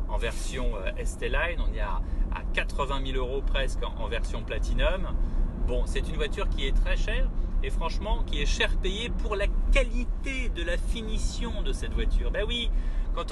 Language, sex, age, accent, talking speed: French, male, 30-49, French, 175 wpm